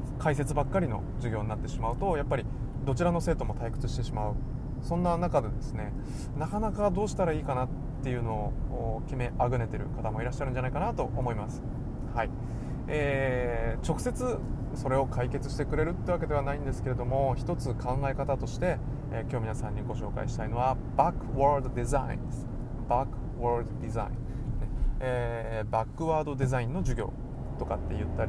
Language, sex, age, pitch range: English, male, 20-39, 115-135 Hz